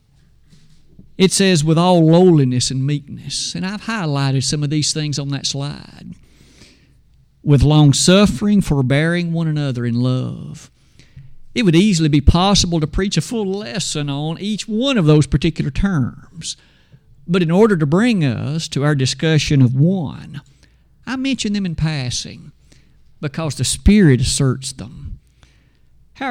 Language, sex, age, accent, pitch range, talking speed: English, male, 50-69, American, 140-180 Hz, 145 wpm